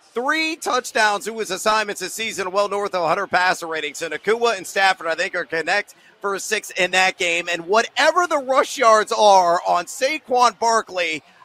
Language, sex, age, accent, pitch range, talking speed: English, male, 40-59, American, 185-230 Hz, 190 wpm